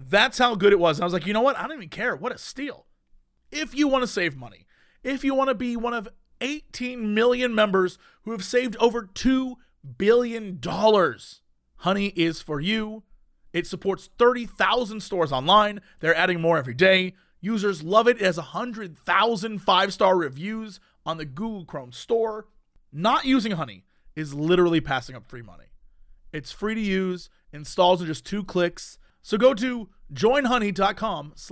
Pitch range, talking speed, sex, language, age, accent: 150-225 Hz, 175 wpm, male, English, 30-49, American